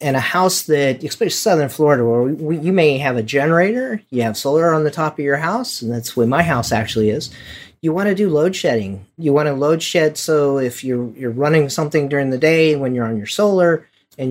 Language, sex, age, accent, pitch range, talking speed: English, male, 40-59, American, 120-155 Hz, 230 wpm